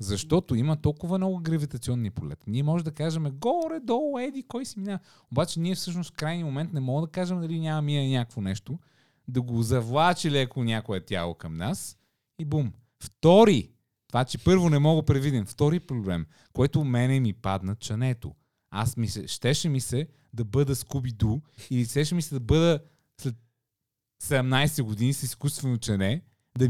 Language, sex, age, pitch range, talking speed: Bulgarian, male, 30-49, 105-150 Hz, 175 wpm